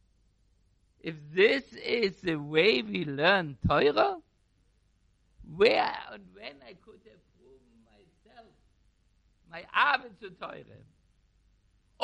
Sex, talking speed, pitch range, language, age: male, 100 wpm, 95-150 Hz, English, 60-79